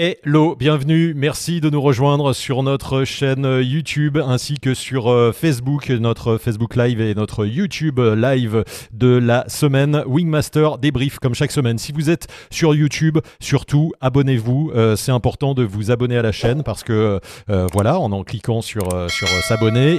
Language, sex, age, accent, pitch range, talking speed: French, male, 30-49, French, 110-140 Hz, 170 wpm